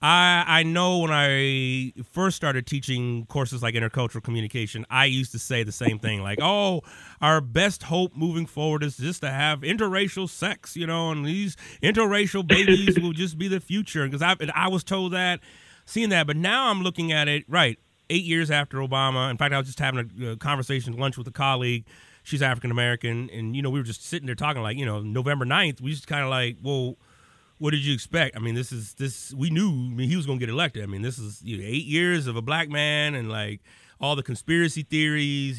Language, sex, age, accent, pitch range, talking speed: English, male, 30-49, American, 120-160 Hz, 225 wpm